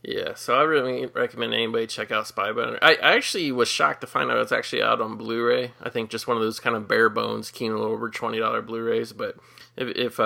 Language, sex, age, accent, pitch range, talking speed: English, male, 20-39, American, 115-130 Hz, 235 wpm